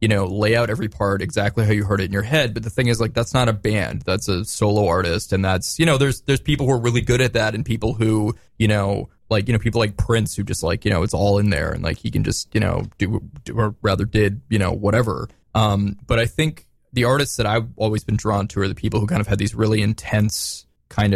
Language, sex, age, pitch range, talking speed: English, male, 20-39, 100-115 Hz, 280 wpm